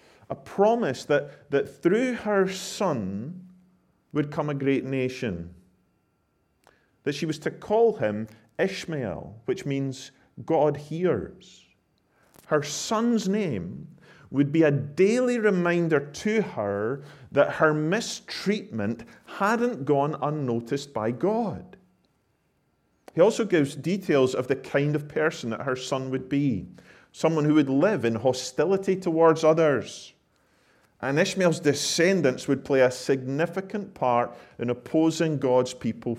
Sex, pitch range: male, 110-165 Hz